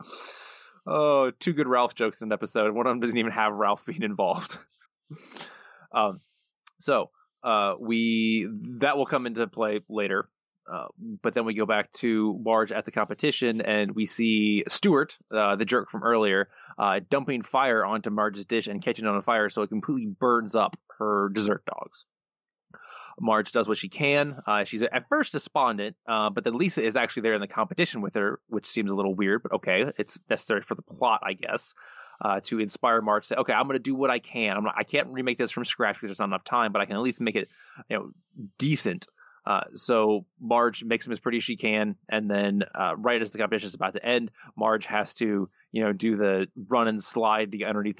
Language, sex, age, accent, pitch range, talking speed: English, male, 20-39, American, 105-120 Hz, 215 wpm